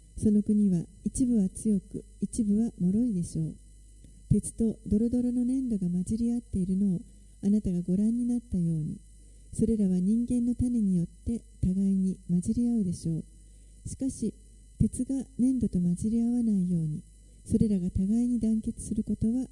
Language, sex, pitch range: Japanese, female, 175-230 Hz